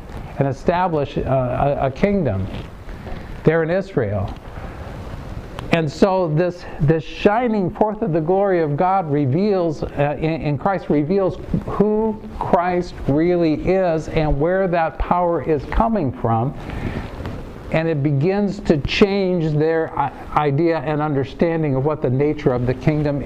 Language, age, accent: English, 50-69, American